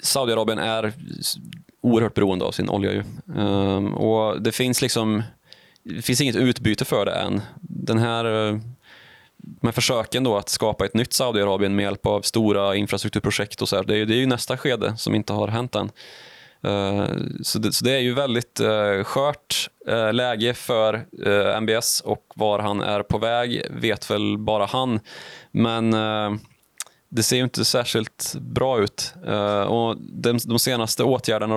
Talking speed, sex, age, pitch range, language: 145 wpm, male, 20-39, 105-120 Hz, Swedish